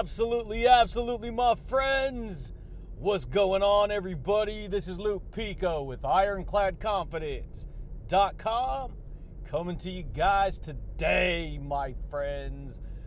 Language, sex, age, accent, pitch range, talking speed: English, male, 40-59, American, 145-210 Hz, 95 wpm